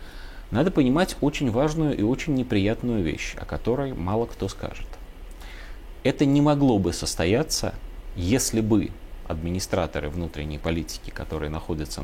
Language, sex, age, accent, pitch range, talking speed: Russian, male, 30-49, native, 90-120 Hz, 125 wpm